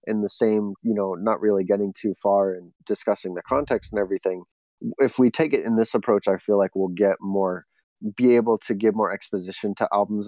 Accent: American